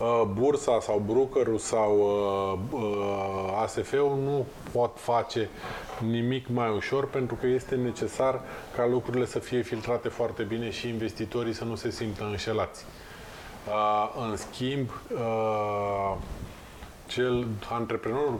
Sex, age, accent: male, 20-39, native